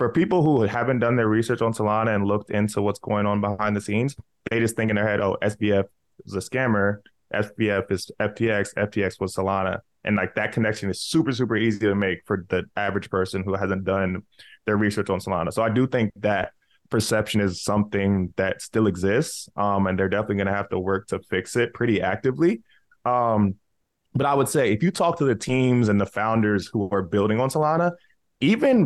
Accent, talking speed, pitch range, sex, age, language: American, 210 wpm, 95-115 Hz, male, 20-39, English